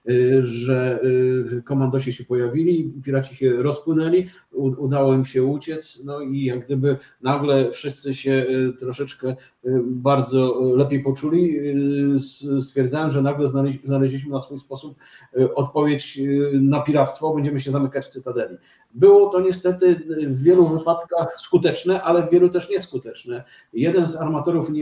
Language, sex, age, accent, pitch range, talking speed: Polish, male, 40-59, native, 130-155 Hz, 125 wpm